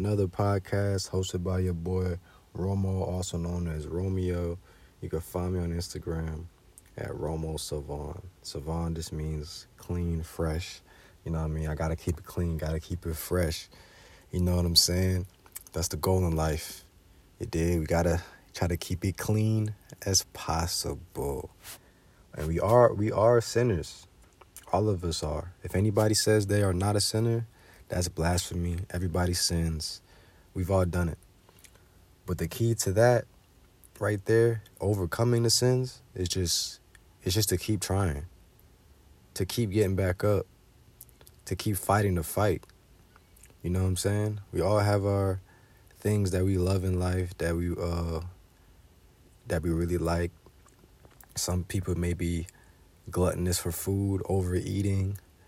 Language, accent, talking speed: English, American, 155 wpm